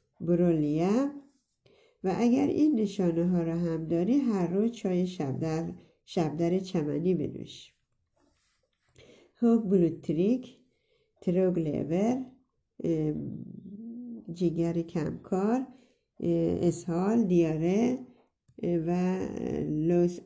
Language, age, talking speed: Persian, 60-79, 75 wpm